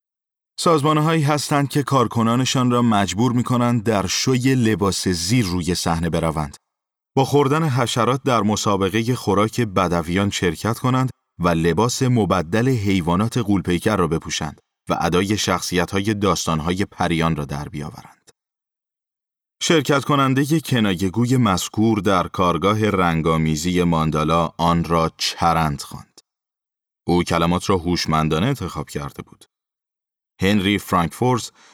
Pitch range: 85-120 Hz